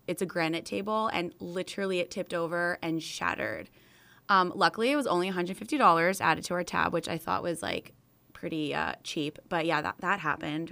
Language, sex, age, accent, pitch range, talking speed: English, female, 20-39, American, 175-235 Hz, 190 wpm